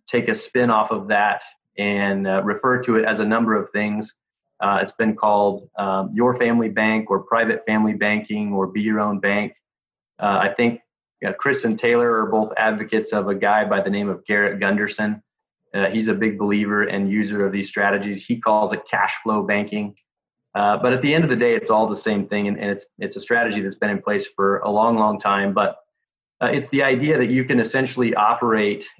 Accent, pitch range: American, 105-120 Hz